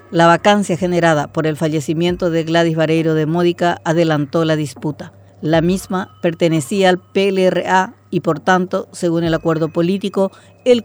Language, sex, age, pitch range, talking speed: Spanish, female, 40-59, 165-190 Hz, 150 wpm